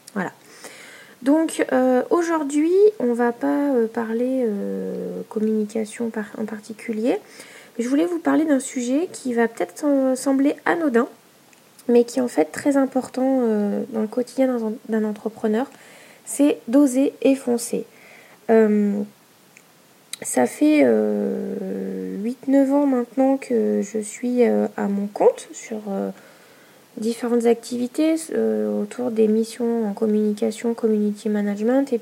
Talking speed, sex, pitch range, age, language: 135 wpm, female, 220-265 Hz, 20-39, French